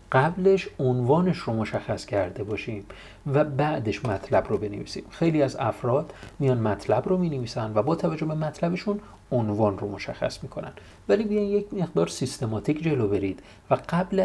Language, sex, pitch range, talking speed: Persian, male, 105-150 Hz, 150 wpm